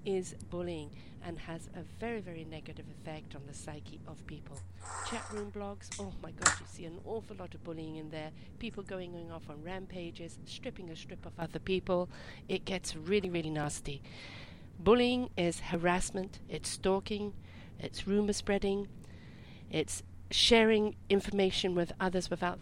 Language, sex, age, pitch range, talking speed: English, female, 50-69, 160-195 Hz, 155 wpm